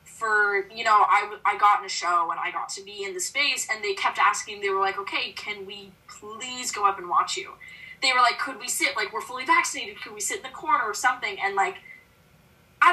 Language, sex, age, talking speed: English, female, 10-29, 250 wpm